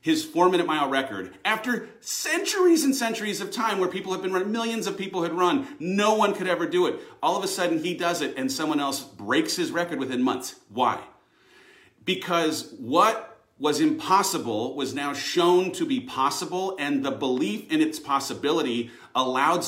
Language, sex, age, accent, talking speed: English, male, 40-59, American, 185 wpm